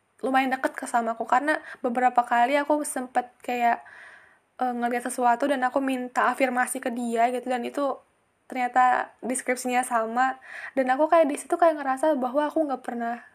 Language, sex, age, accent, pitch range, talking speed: Indonesian, female, 10-29, native, 235-285 Hz, 155 wpm